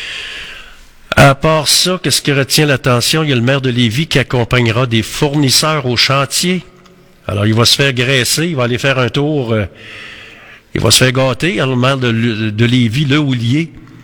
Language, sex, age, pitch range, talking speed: French, male, 50-69, 115-145 Hz, 190 wpm